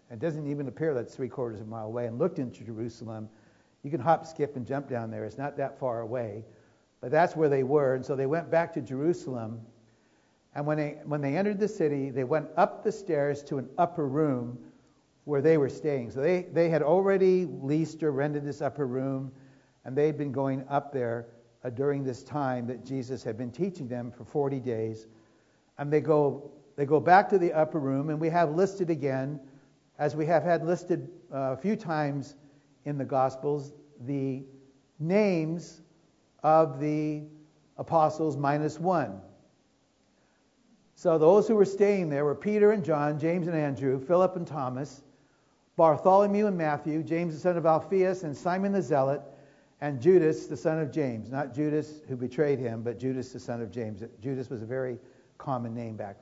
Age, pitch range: 60-79, 130-160 Hz